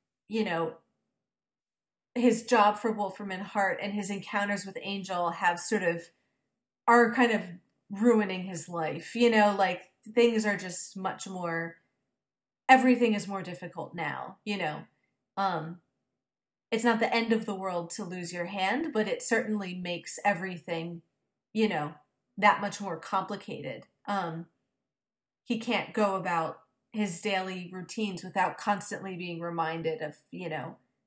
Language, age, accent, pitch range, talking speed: English, 30-49, American, 170-215 Hz, 145 wpm